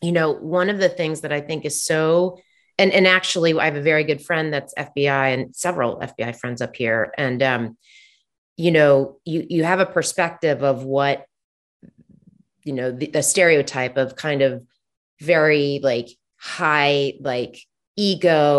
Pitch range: 135-175 Hz